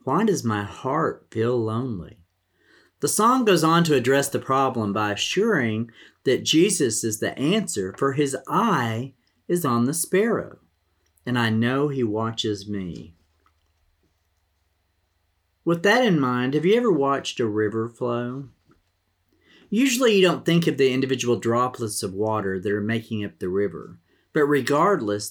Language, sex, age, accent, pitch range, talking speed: English, male, 40-59, American, 105-140 Hz, 150 wpm